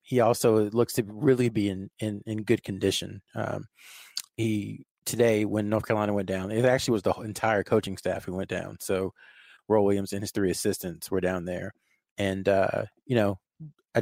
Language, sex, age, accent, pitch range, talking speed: English, male, 30-49, American, 95-110 Hz, 190 wpm